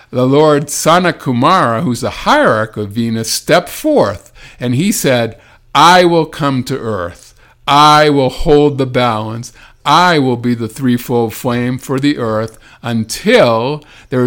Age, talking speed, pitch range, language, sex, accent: 50-69, 145 wpm, 110-140 Hz, English, male, American